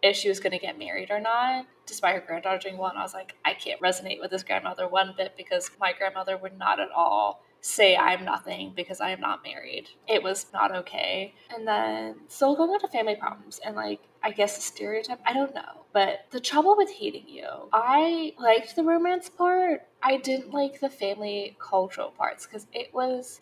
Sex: female